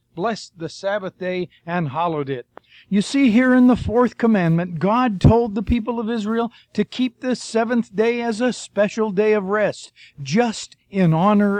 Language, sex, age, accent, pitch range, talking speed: English, male, 50-69, American, 180-230 Hz, 175 wpm